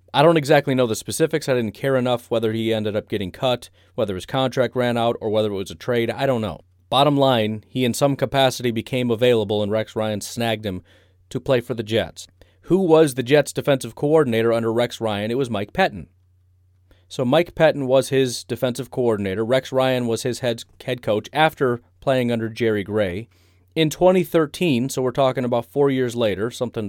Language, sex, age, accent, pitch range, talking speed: English, male, 30-49, American, 105-135 Hz, 200 wpm